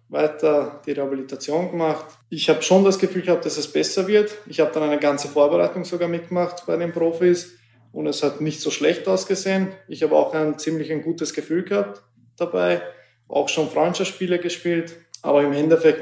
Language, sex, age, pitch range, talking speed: German, male, 20-39, 135-155 Hz, 185 wpm